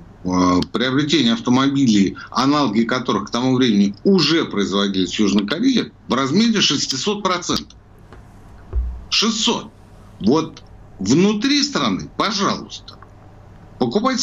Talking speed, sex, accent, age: 90 wpm, male, native, 60-79